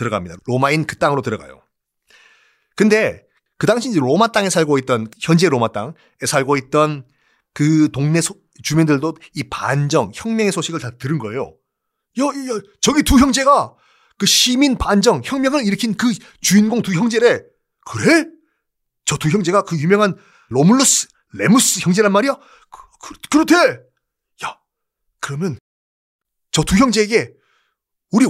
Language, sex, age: Korean, male, 30-49